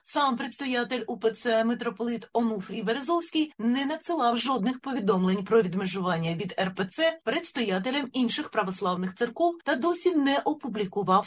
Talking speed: 115 wpm